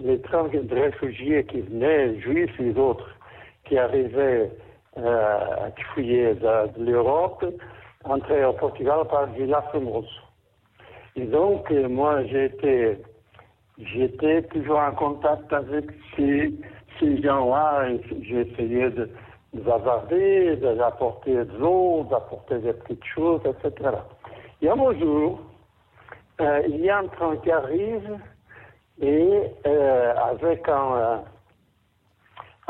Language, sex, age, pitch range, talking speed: French, male, 60-79, 115-170 Hz, 125 wpm